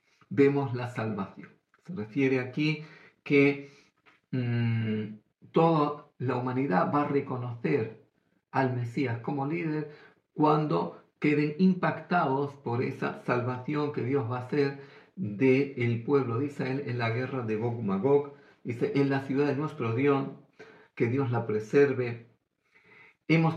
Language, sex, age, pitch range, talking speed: Greek, male, 50-69, 120-150 Hz, 130 wpm